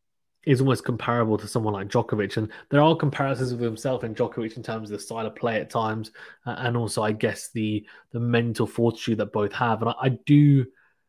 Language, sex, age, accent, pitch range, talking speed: English, male, 20-39, British, 110-130 Hz, 210 wpm